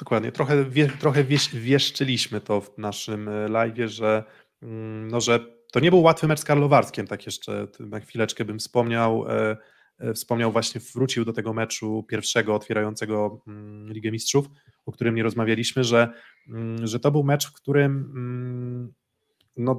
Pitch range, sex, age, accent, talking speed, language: 110-130 Hz, male, 20-39, native, 135 wpm, Polish